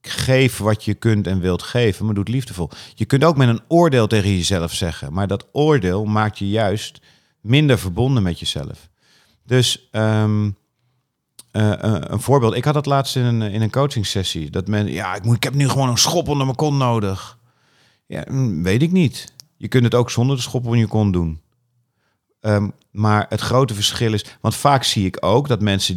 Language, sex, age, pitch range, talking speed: Dutch, male, 50-69, 100-130 Hz, 200 wpm